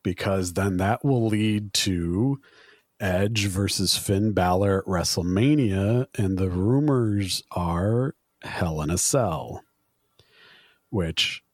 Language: English